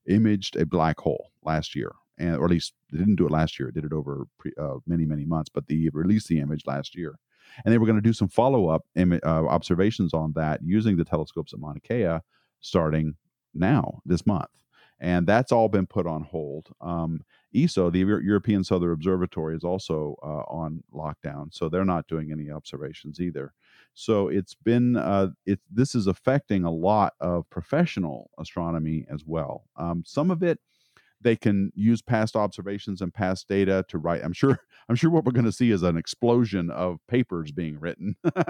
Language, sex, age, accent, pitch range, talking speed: English, male, 40-59, American, 85-110 Hz, 195 wpm